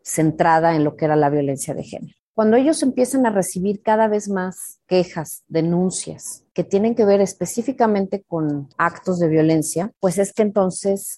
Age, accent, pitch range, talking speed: 30-49, Mexican, 155-190 Hz, 170 wpm